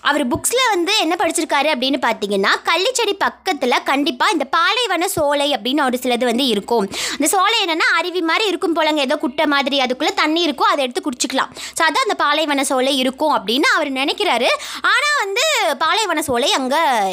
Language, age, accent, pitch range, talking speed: Tamil, 20-39, native, 275-370 Hz, 170 wpm